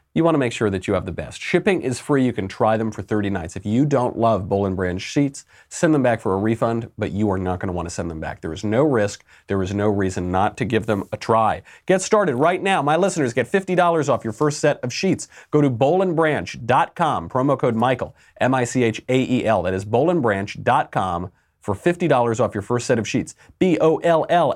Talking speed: 220 wpm